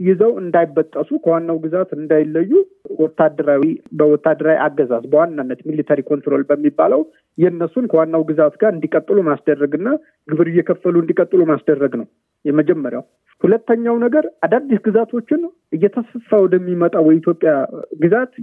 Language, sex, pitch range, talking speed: Amharic, male, 155-215 Hz, 105 wpm